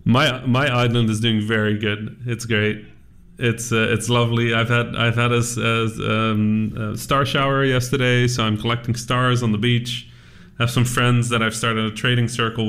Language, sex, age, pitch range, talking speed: English, male, 30-49, 105-120 Hz, 190 wpm